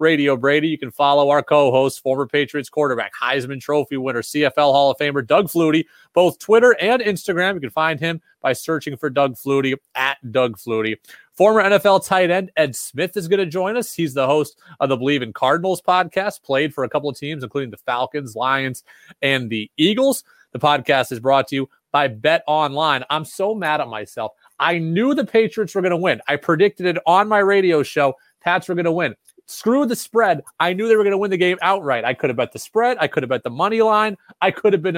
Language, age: English, 30-49